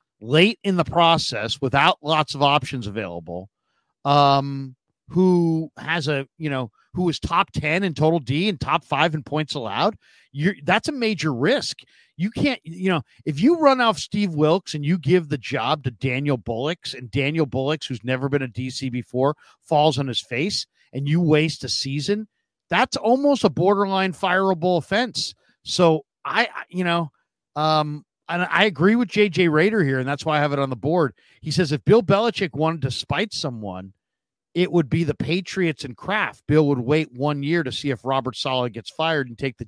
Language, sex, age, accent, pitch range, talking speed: English, male, 50-69, American, 135-185 Hz, 190 wpm